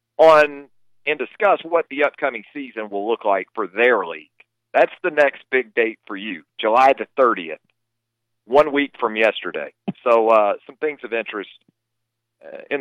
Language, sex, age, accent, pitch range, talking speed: English, male, 50-69, American, 115-145 Hz, 160 wpm